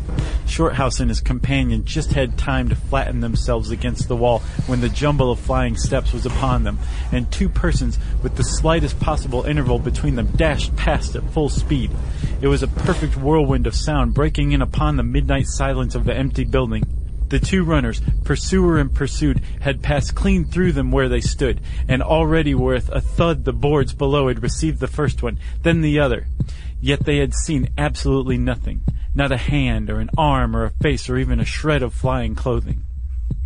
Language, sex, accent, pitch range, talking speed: English, male, American, 115-145 Hz, 190 wpm